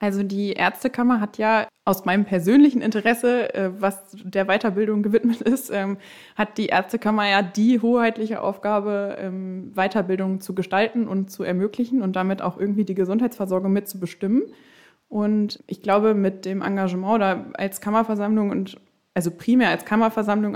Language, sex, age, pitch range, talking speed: German, female, 20-39, 195-225 Hz, 140 wpm